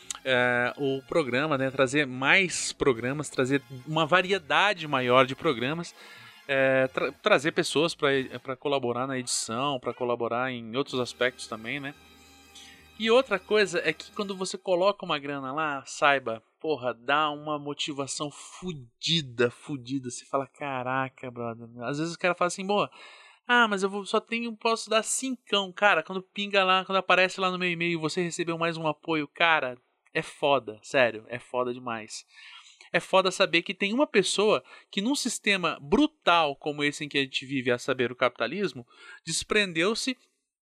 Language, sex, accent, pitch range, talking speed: Portuguese, male, Brazilian, 135-200 Hz, 165 wpm